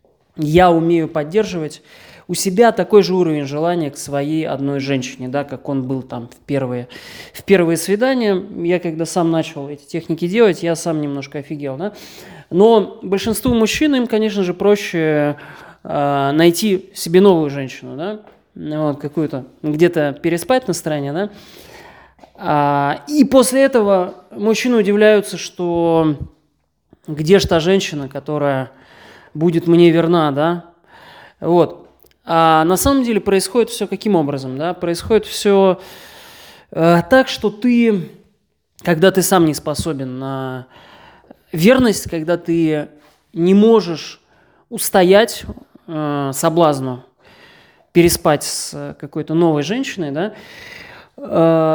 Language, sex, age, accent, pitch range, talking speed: Russian, male, 20-39, native, 150-205 Hz, 125 wpm